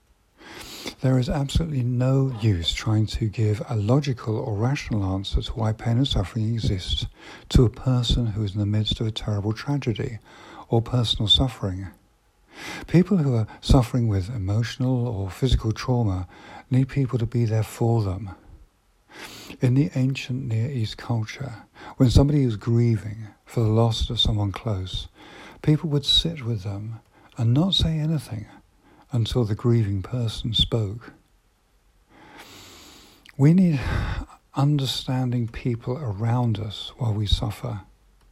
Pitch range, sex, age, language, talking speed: 105-125 Hz, male, 50-69, English, 140 wpm